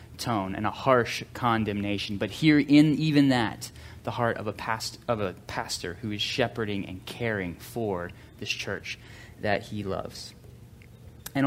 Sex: male